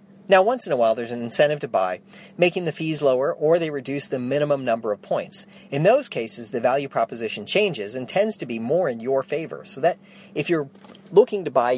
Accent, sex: American, male